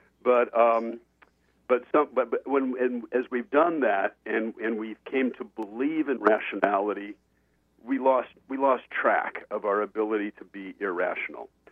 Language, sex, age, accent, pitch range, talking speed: English, male, 50-69, American, 105-140 Hz, 160 wpm